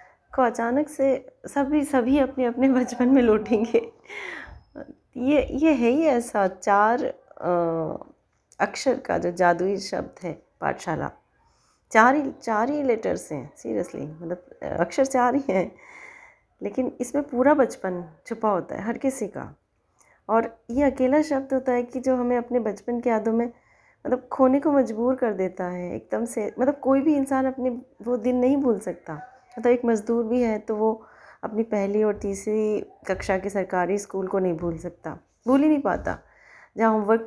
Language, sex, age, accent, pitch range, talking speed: Hindi, female, 20-39, native, 190-265 Hz, 175 wpm